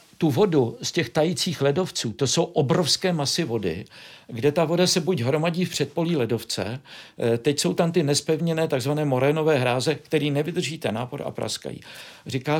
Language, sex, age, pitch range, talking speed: Czech, male, 50-69, 120-160 Hz, 165 wpm